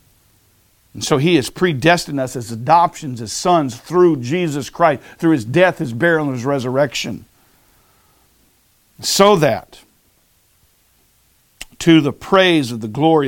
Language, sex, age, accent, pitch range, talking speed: English, male, 50-69, American, 135-185 Hz, 130 wpm